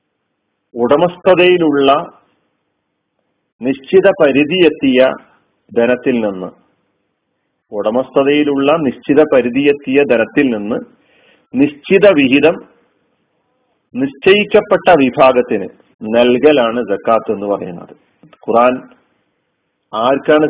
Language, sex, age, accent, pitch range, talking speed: Malayalam, male, 40-59, native, 125-170 Hz, 60 wpm